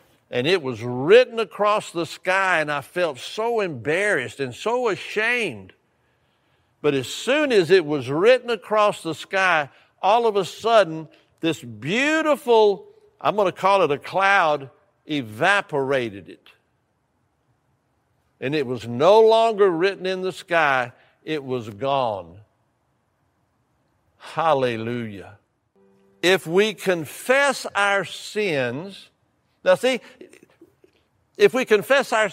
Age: 60-79